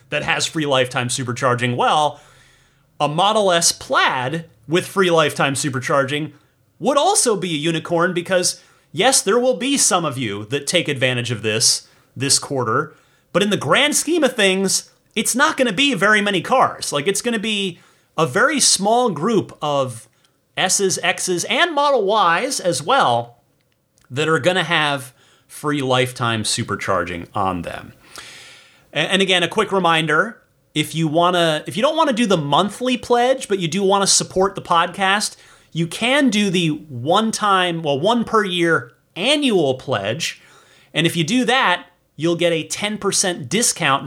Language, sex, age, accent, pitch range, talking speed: English, male, 30-49, American, 140-200 Hz, 170 wpm